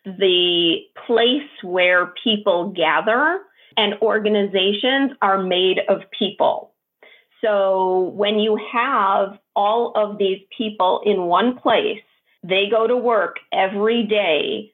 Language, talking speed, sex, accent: English, 115 wpm, female, American